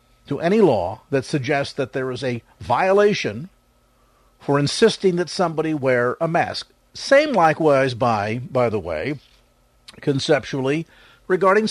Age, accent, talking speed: 50-69, American, 130 wpm